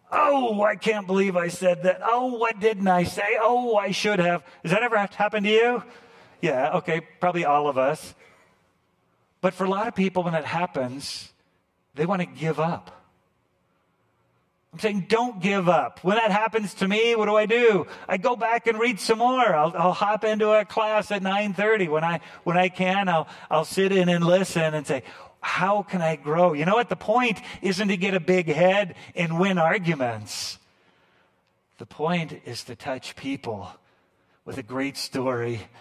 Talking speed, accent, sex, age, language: 190 wpm, American, male, 50-69, English